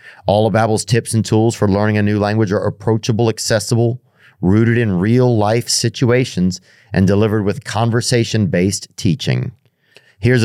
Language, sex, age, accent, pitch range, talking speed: English, male, 40-59, American, 100-125 Hz, 140 wpm